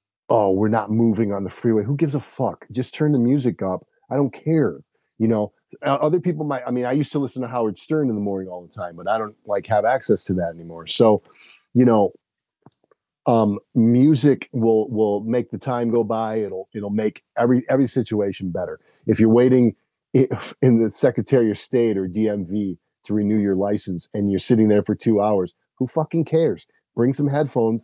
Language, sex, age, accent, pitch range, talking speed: English, male, 40-59, American, 100-120 Hz, 205 wpm